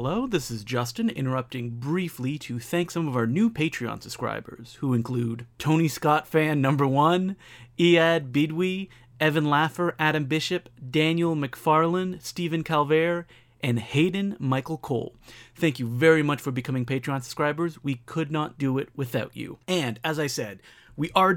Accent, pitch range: American, 125-175 Hz